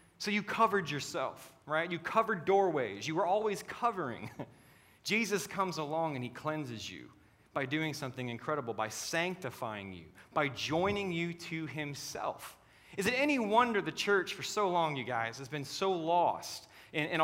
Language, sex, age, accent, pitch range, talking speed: English, male, 30-49, American, 140-185 Hz, 165 wpm